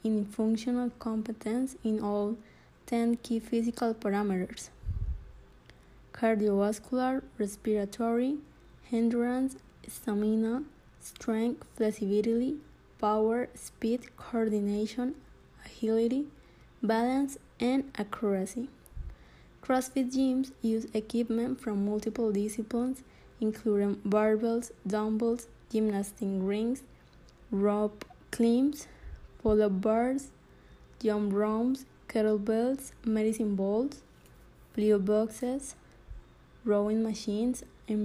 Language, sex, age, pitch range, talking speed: English, female, 20-39, 215-245 Hz, 75 wpm